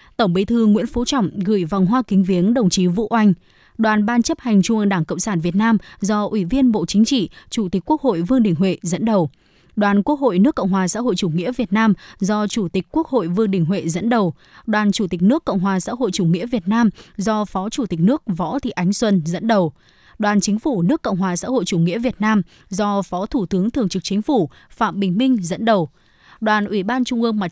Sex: female